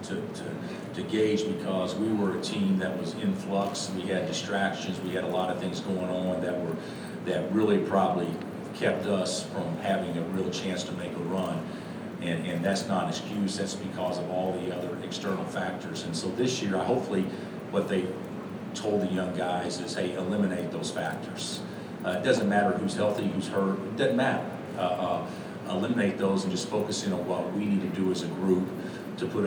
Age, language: 50-69, English